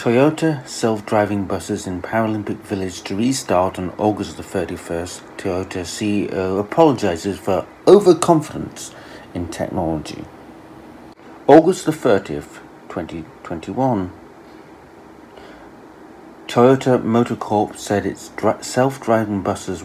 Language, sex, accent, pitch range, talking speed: English, male, British, 95-115 Hz, 85 wpm